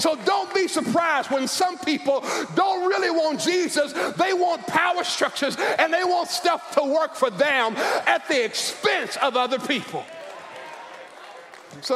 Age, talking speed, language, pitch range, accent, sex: 50-69, 150 wpm, English, 280-325 Hz, American, male